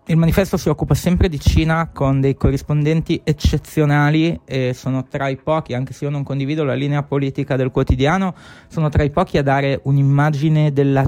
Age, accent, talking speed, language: 20-39, native, 185 wpm, Italian